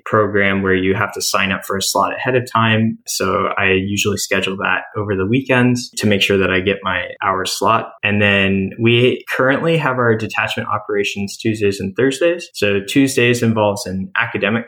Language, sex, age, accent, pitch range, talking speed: English, male, 20-39, American, 100-120 Hz, 190 wpm